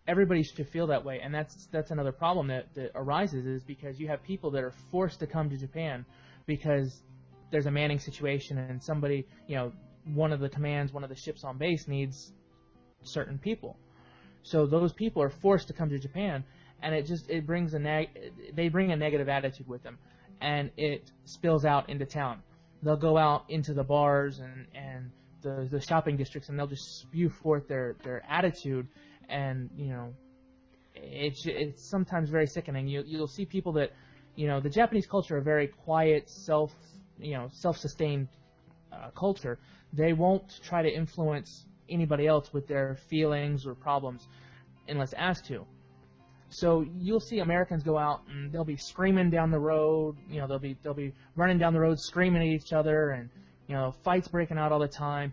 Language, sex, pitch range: English, male, 135-160 Hz